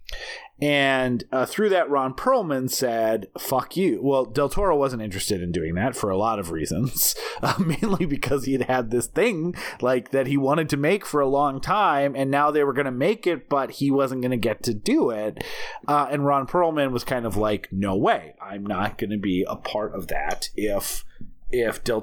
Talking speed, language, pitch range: 215 wpm, English, 115-145 Hz